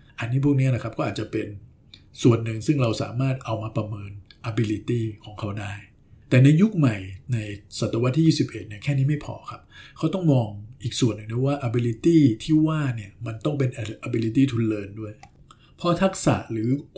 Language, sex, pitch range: Thai, male, 110-135 Hz